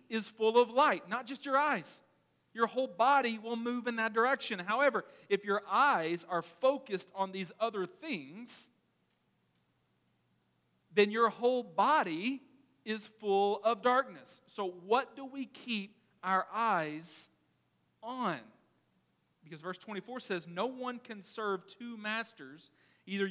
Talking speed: 135 wpm